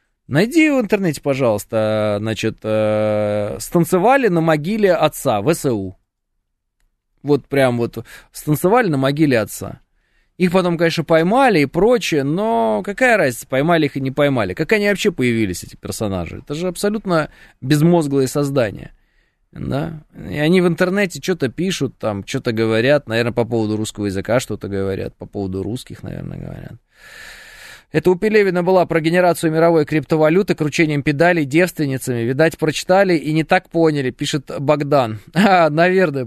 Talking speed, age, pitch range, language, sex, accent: 140 wpm, 20-39, 125-180 Hz, Russian, male, native